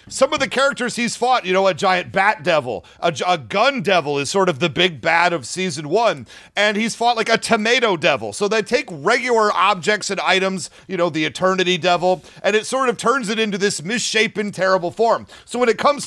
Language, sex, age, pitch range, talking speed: English, male, 40-59, 185-225 Hz, 220 wpm